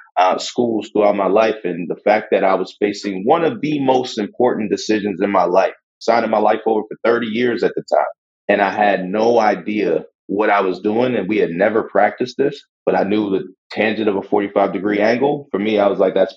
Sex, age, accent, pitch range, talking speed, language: male, 30-49, American, 100-120 Hz, 225 wpm, English